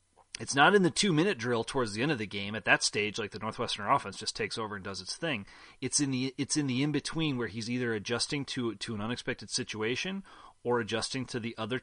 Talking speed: 240 wpm